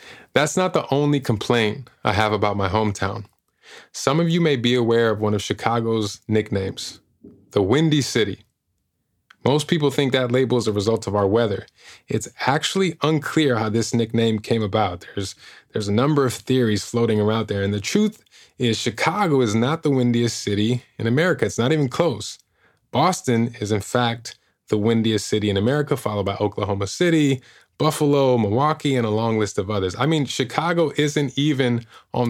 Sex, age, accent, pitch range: male, 20-39, American, 110-140 Hz